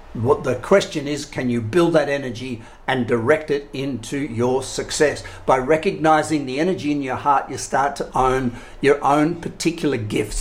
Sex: male